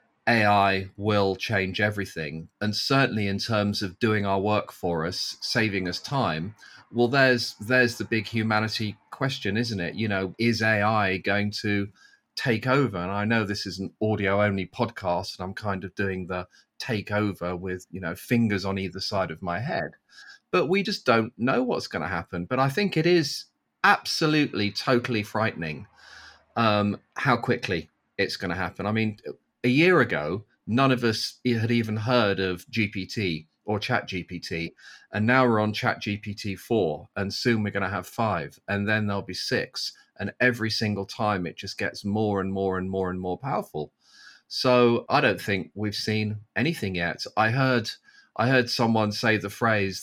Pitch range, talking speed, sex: 95-115 Hz, 175 wpm, male